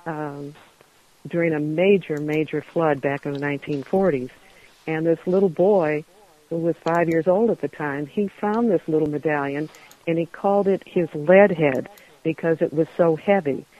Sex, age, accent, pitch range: female, 60-79, American, 150-180 Hz